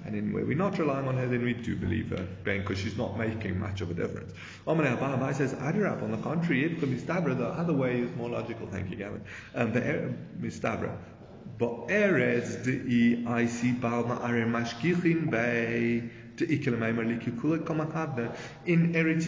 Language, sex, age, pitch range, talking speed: English, male, 30-49, 115-165 Hz, 155 wpm